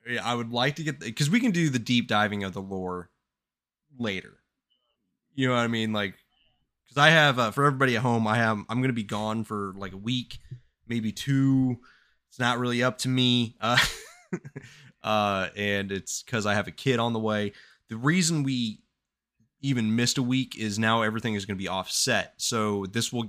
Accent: American